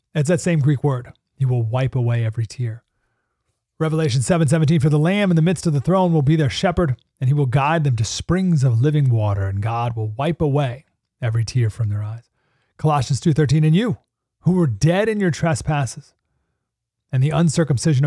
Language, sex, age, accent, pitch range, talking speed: English, male, 30-49, American, 115-145 Hz, 205 wpm